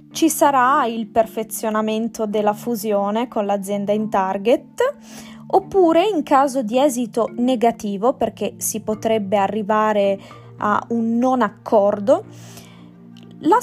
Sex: female